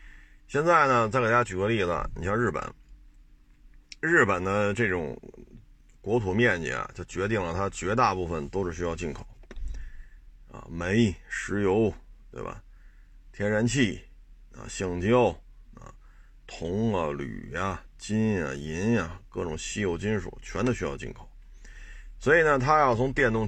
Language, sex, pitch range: Chinese, male, 90-115 Hz